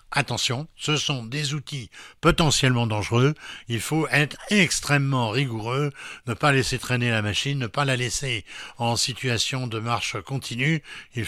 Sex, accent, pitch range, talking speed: male, French, 115-140 Hz, 150 wpm